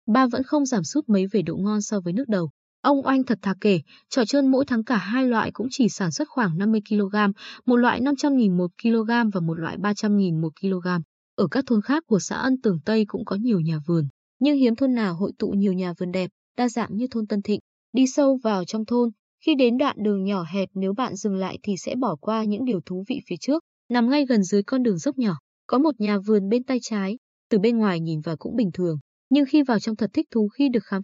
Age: 20-39